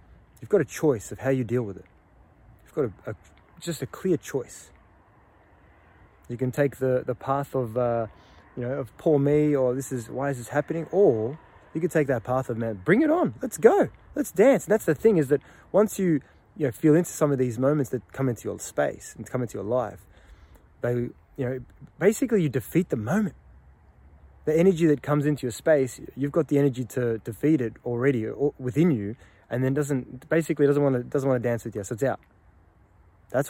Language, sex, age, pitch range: English, male, 20-39, 100-145 Hz